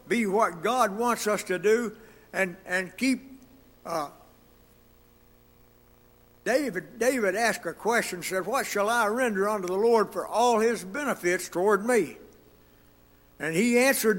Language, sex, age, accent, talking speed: English, male, 60-79, American, 140 wpm